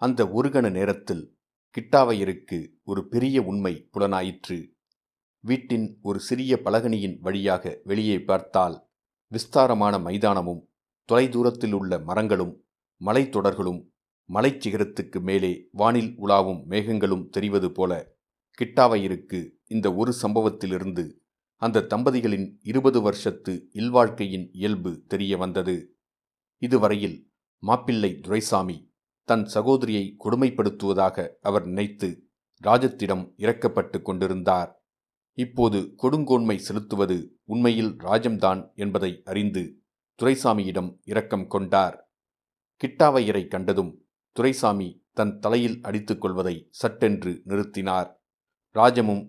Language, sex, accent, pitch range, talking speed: Tamil, male, native, 95-115 Hz, 85 wpm